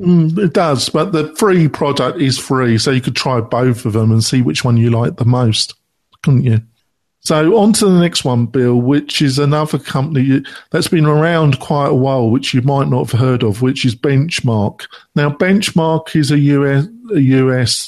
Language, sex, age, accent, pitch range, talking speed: English, male, 50-69, British, 130-155 Hz, 200 wpm